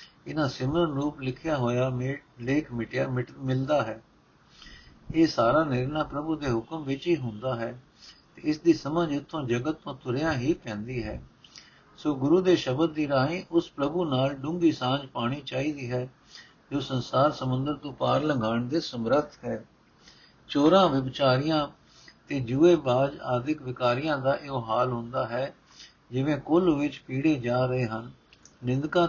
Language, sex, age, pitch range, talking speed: Punjabi, male, 60-79, 125-155 Hz, 150 wpm